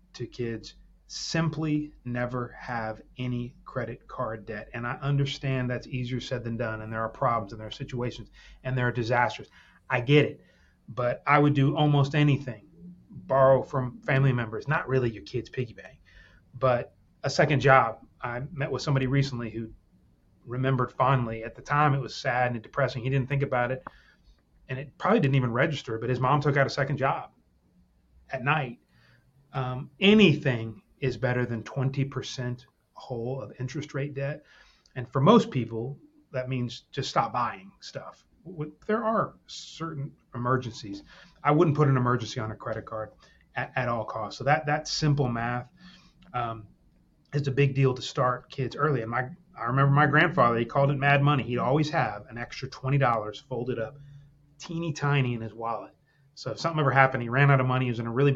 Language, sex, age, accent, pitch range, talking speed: English, male, 30-49, American, 120-145 Hz, 185 wpm